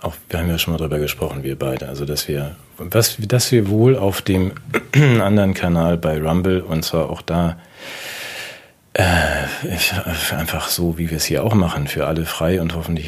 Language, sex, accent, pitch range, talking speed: German, male, German, 75-85 Hz, 195 wpm